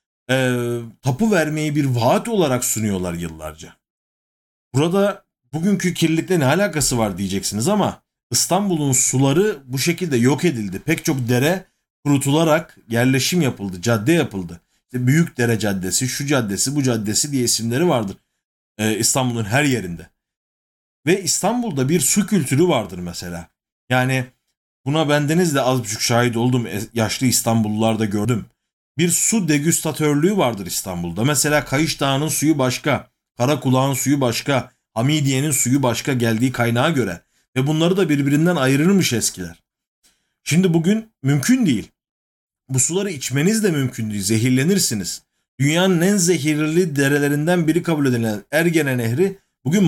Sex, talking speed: male, 130 wpm